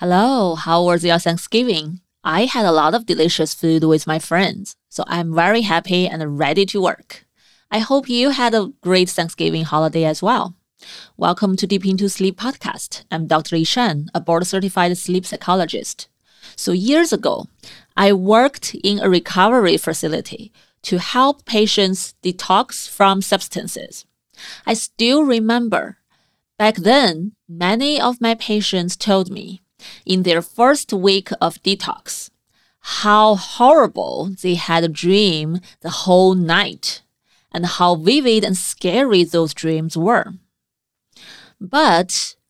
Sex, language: female, English